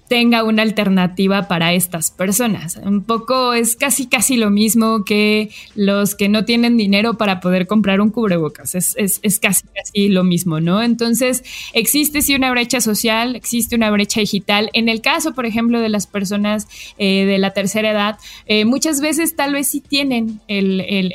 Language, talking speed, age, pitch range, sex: Spanish, 180 wpm, 20-39, 195-235 Hz, female